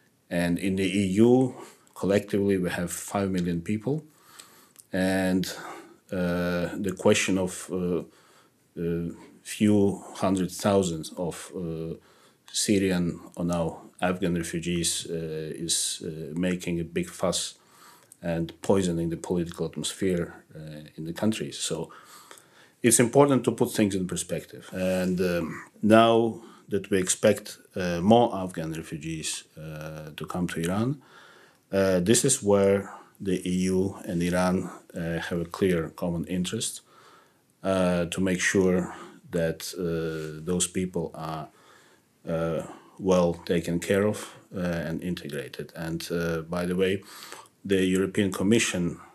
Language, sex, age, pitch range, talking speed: English, male, 40-59, 85-95 Hz, 130 wpm